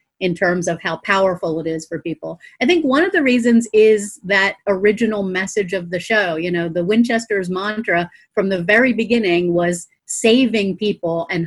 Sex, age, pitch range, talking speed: female, 30-49, 180-225 Hz, 185 wpm